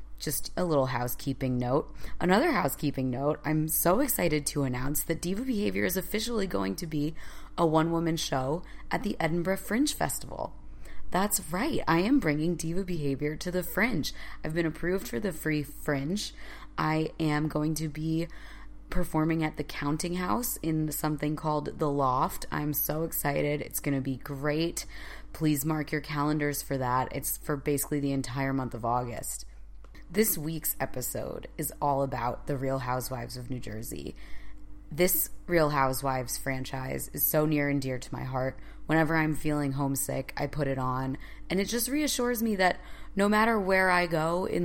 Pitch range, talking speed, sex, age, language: 135-175 Hz, 170 wpm, female, 20-39, English